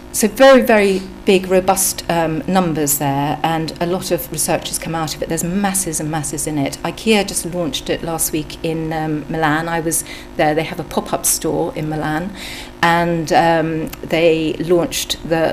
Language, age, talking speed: English, 50-69, 185 wpm